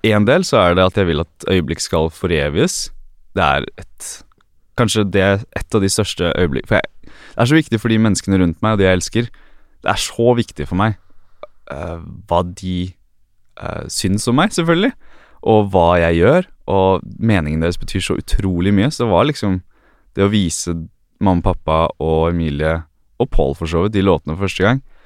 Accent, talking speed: Swedish, 190 wpm